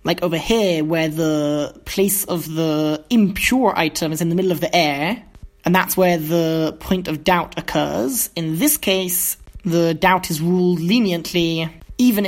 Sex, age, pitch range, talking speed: male, 20-39, 160-190 Hz, 165 wpm